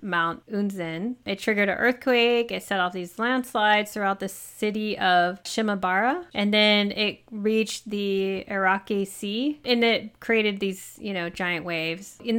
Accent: American